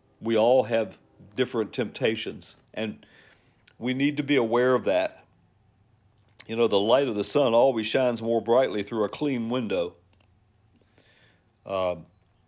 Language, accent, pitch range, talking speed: English, American, 105-125 Hz, 140 wpm